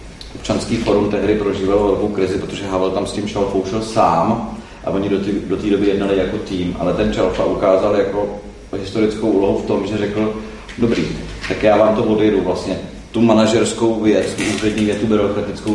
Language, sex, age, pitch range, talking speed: Czech, male, 40-59, 95-110 Hz, 190 wpm